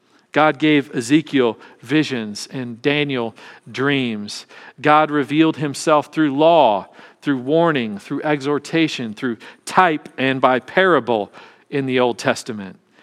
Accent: American